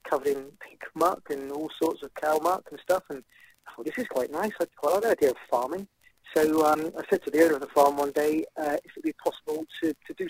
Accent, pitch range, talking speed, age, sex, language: British, 140-195 Hz, 275 wpm, 30-49, male, English